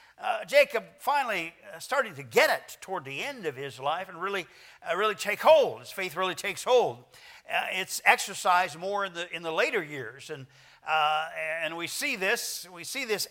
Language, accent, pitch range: English, American, 160-215 Hz